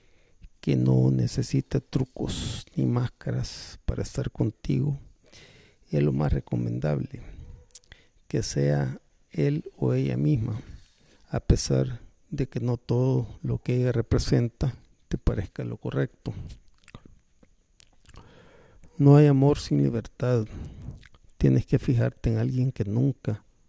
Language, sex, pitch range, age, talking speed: Spanish, male, 75-125 Hz, 50-69, 115 wpm